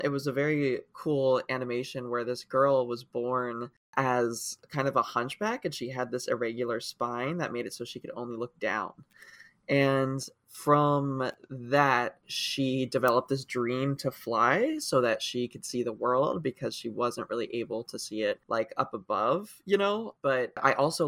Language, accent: English, American